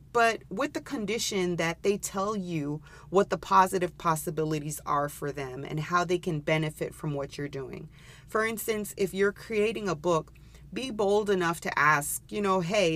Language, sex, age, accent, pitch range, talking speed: English, female, 30-49, American, 150-190 Hz, 180 wpm